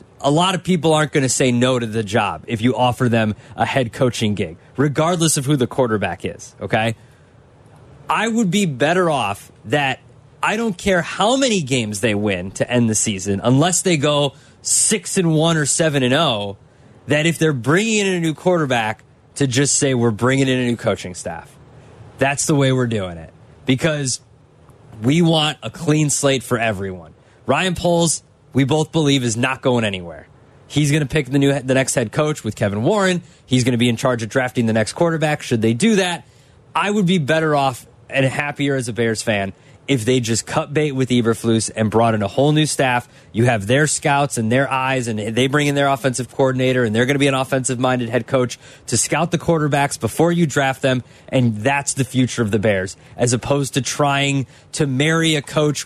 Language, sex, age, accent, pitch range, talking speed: English, male, 20-39, American, 120-155 Hz, 210 wpm